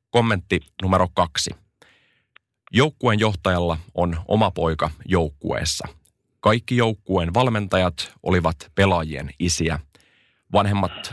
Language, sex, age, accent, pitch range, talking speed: Finnish, male, 30-49, native, 80-105 Hz, 85 wpm